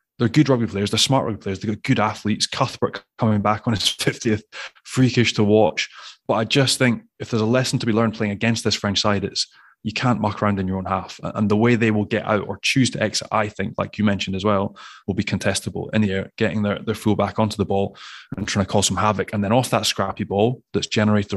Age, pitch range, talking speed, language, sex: 20-39, 105-120 Hz, 260 wpm, English, male